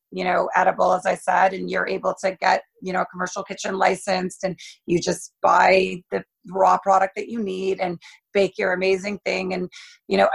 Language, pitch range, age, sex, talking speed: English, 185-220 Hz, 30-49, female, 205 wpm